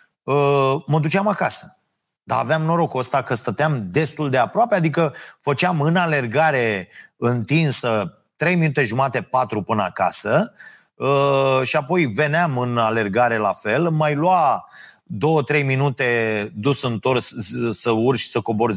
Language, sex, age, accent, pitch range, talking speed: Romanian, male, 30-49, native, 120-170 Hz, 130 wpm